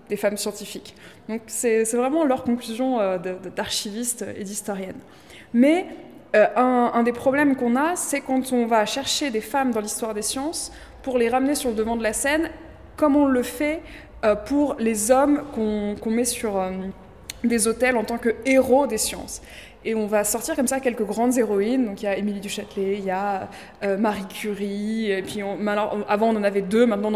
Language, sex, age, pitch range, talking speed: French, female, 20-39, 210-255 Hz, 205 wpm